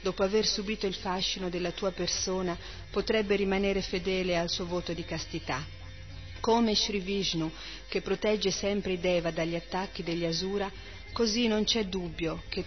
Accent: native